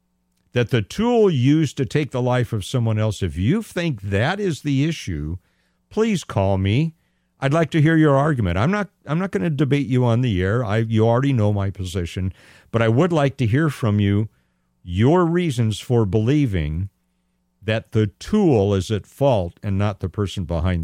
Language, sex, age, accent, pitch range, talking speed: English, male, 50-69, American, 90-125 Hz, 195 wpm